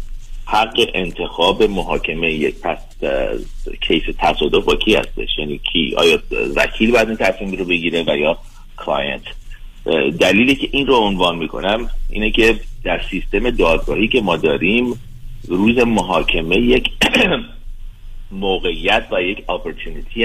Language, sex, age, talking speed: Persian, male, 40-59, 125 wpm